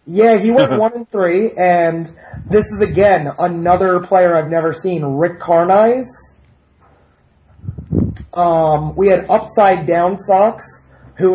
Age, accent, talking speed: 30-49, American, 120 wpm